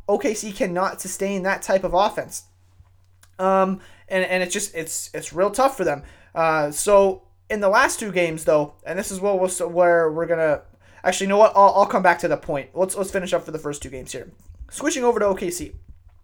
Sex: male